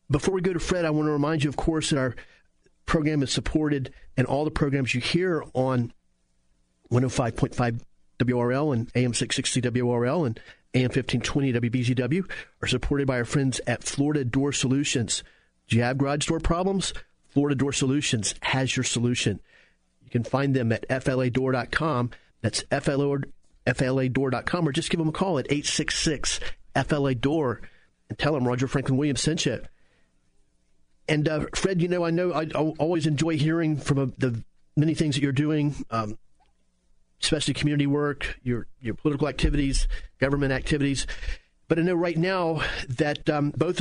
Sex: male